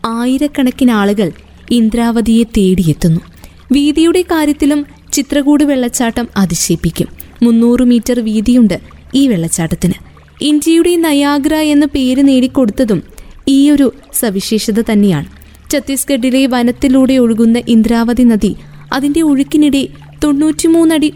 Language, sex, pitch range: Malayalam, female, 220-285 Hz